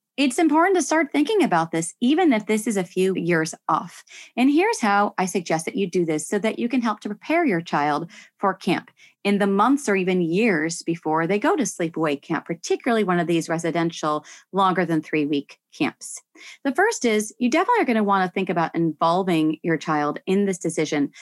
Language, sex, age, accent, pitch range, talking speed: English, female, 30-49, American, 165-245 Hz, 210 wpm